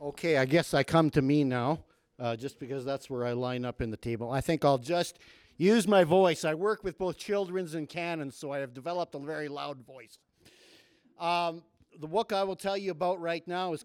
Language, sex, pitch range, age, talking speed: English, male, 150-190 Hz, 50-69, 225 wpm